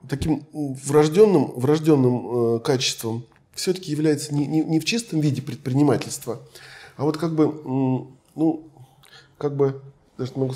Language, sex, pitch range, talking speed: Russian, male, 120-150 Hz, 125 wpm